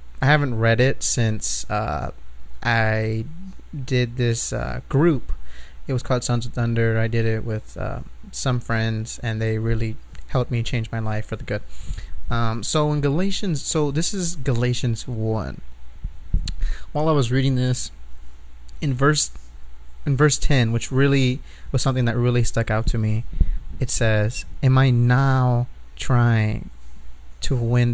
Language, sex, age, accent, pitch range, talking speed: English, male, 30-49, American, 80-135 Hz, 155 wpm